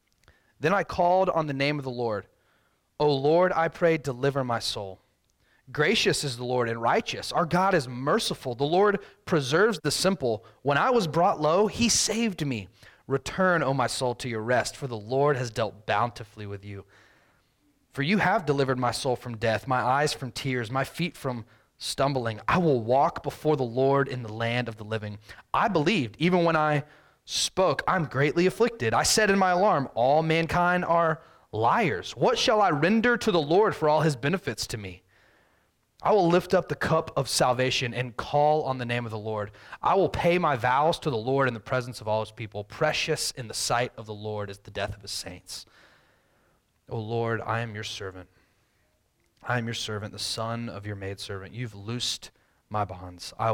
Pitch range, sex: 110-155 Hz, male